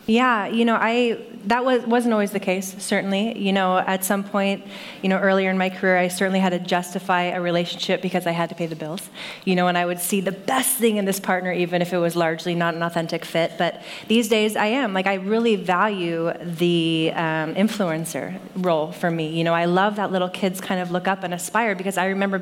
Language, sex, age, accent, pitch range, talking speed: English, female, 20-39, American, 175-200 Hz, 235 wpm